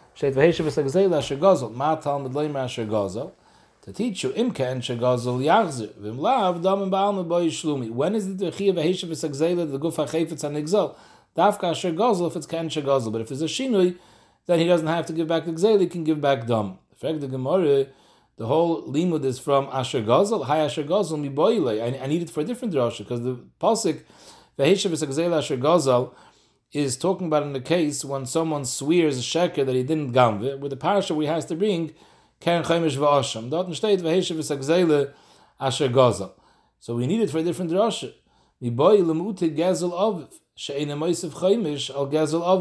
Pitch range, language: 135-175 Hz, English